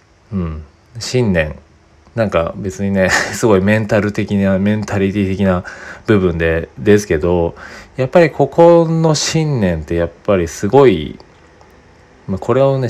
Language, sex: Japanese, male